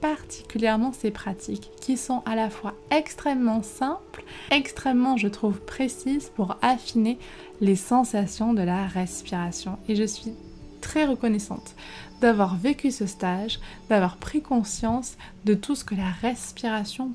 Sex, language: female, French